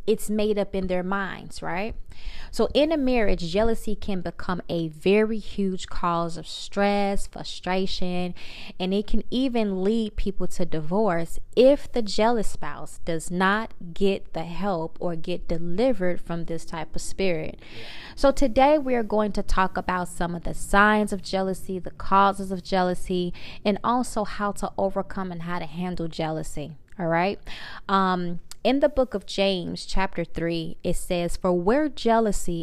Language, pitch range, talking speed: English, 175-220 Hz, 160 wpm